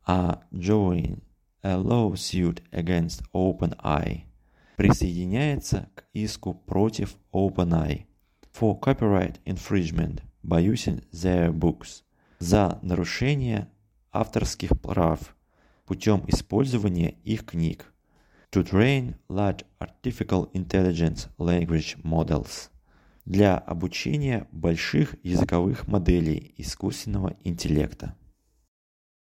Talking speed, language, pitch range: 85 wpm, Russian, 85-105 Hz